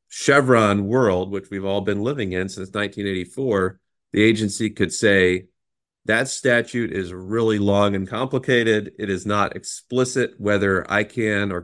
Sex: male